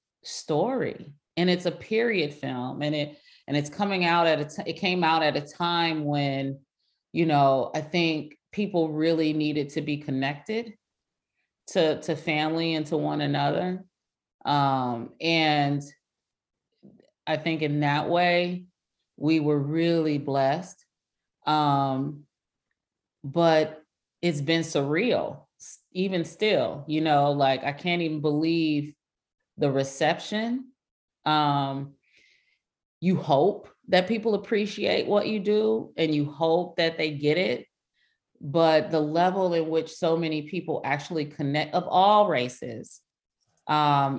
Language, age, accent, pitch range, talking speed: English, 30-49, American, 145-170 Hz, 130 wpm